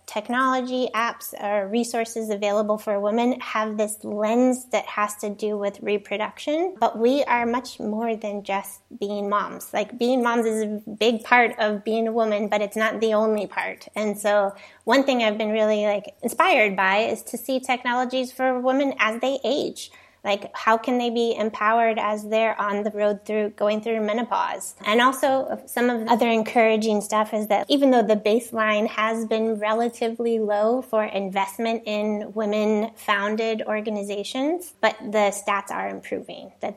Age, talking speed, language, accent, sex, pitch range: 20-39, 170 wpm, English, American, female, 210-235 Hz